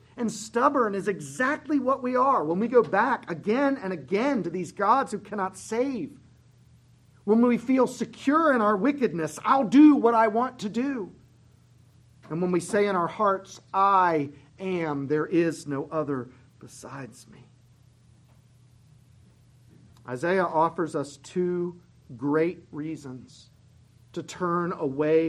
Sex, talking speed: male, 140 wpm